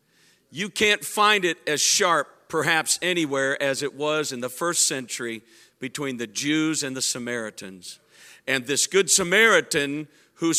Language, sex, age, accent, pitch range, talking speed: English, male, 50-69, American, 155-250 Hz, 145 wpm